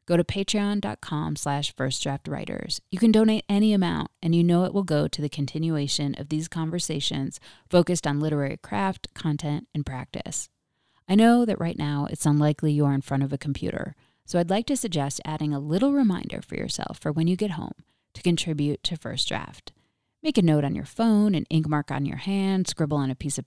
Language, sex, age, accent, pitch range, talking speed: English, female, 30-49, American, 145-200 Hz, 205 wpm